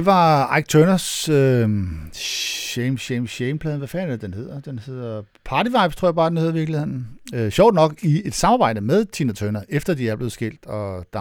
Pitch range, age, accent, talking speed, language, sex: 110-155 Hz, 60-79, native, 210 wpm, Danish, male